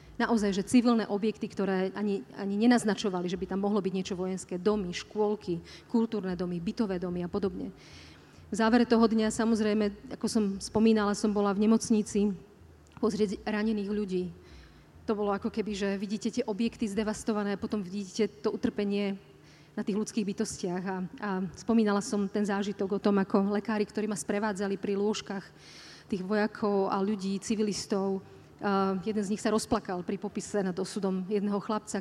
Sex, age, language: female, 30-49, Slovak